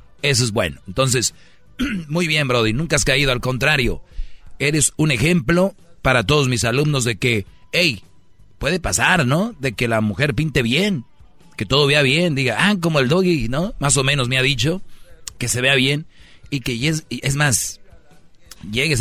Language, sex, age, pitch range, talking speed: Spanish, male, 40-59, 110-140 Hz, 180 wpm